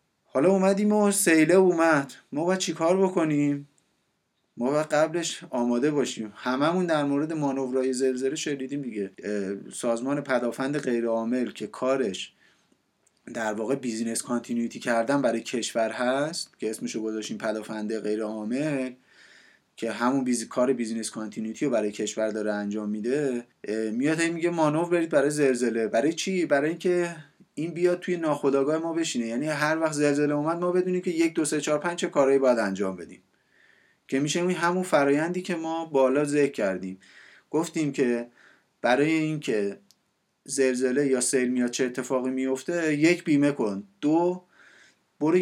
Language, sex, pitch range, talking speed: Persian, male, 120-160 Hz, 145 wpm